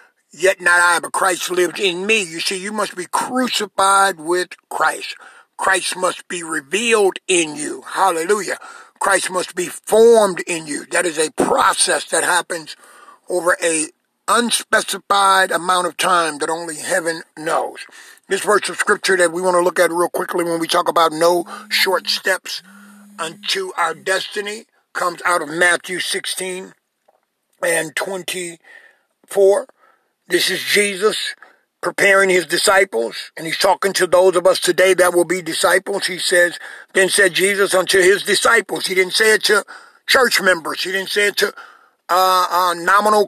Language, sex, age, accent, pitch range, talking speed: English, male, 50-69, American, 180-225 Hz, 160 wpm